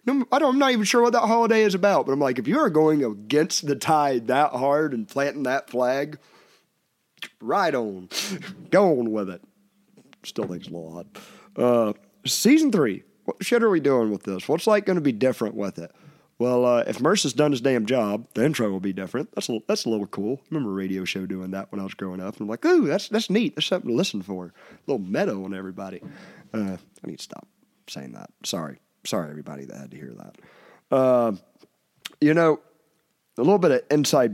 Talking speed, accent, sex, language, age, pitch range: 225 wpm, American, male, English, 30-49, 100-170 Hz